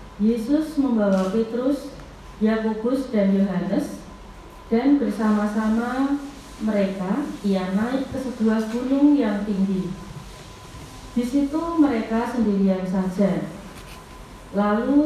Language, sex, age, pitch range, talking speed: Indonesian, female, 30-49, 195-245 Hz, 85 wpm